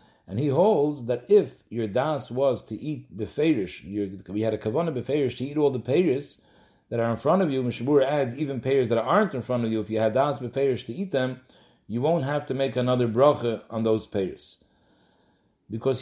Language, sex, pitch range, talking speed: English, male, 115-160 Hz, 215 wpm